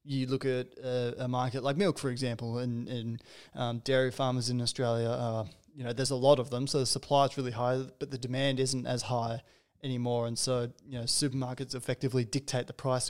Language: English